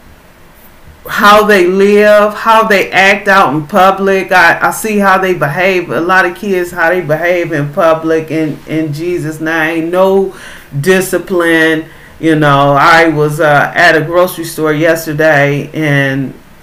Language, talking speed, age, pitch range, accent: English, 150 wpm, 40-59, 150-185 Hz, American